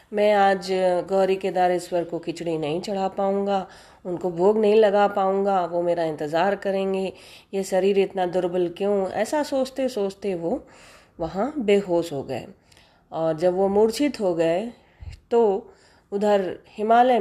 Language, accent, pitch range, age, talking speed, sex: Hindi, native, 180-220 Hz, 30-49, 140 wpm, female